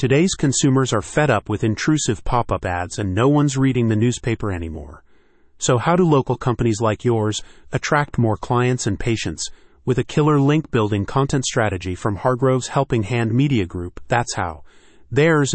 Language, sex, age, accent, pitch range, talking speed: English, male, 40-59, American, 110-135 Hz, 165 wpm